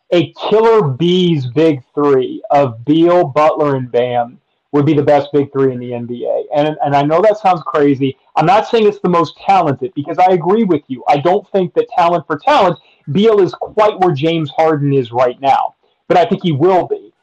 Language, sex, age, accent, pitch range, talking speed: English, male, 30-49, American, 150-210 Hz, 210 wpm